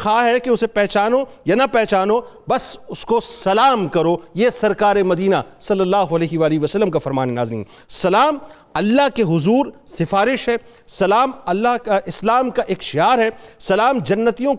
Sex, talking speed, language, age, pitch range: male, 160 wpm, Urdu, 50-69, 200-260 Hz